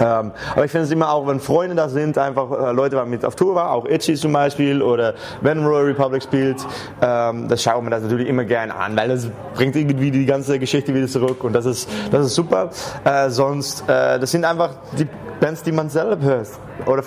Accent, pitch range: German, 115-140 Hz